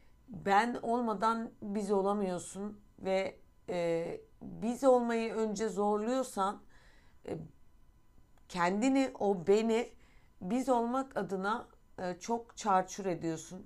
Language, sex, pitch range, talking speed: Turkish, female, 175-225 Hz, 90 wpm